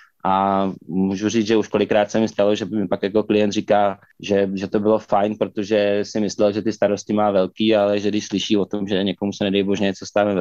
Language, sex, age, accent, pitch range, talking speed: Czech, male, 20-39, native, 100-110 Hz, 240 wpm